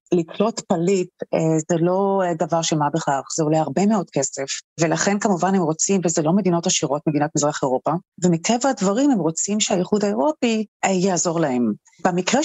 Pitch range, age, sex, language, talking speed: 170-225 Hz, 30-49, female, Hebrew, 160 wpm